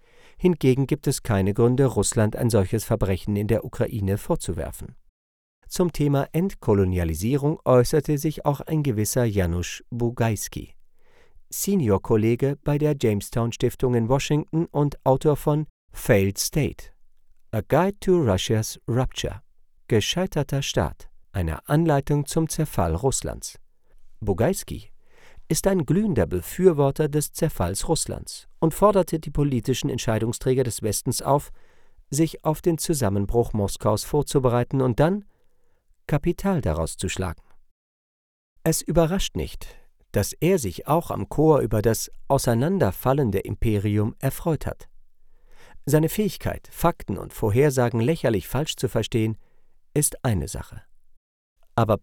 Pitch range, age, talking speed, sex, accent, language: 105-155 Hz, 50-69, 120 wpm, male, German, German